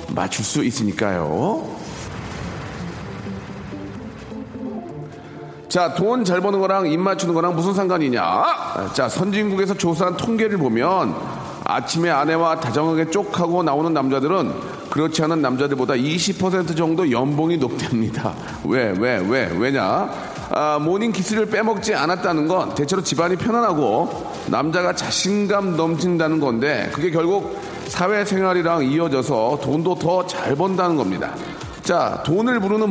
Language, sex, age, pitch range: Korean, male, 40-59, 160-215 Hz